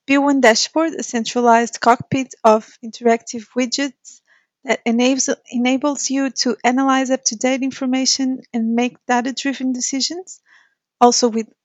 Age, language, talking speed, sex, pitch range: 30-49, English, 115 wpm, female, 245-275 Hz